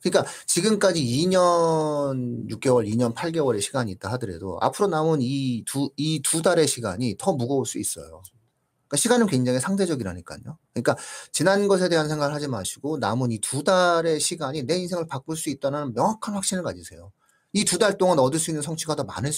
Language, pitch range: Korean, 120-180 Hz